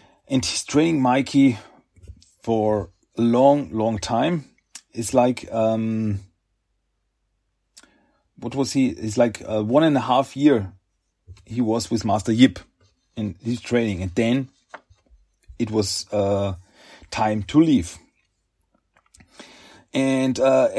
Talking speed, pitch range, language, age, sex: 120 wpm, 95-130 Hz, German, 40-59, male